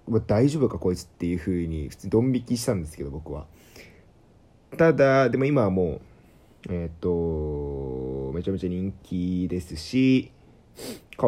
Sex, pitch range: male, 90-120 Hz